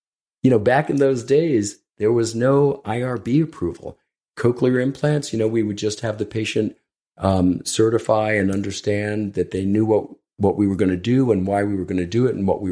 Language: English